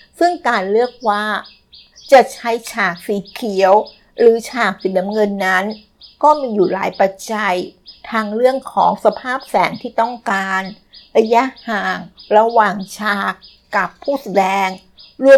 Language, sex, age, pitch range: Thai, female, 60-79, 200-240 Hz